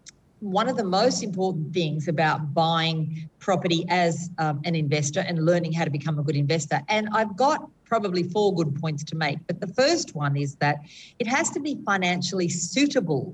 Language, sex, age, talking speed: English, female, 50-69, 190 wpm